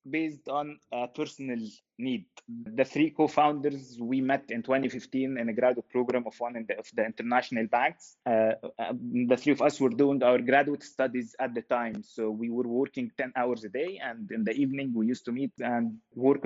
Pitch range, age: 120-150 Hz, 20-39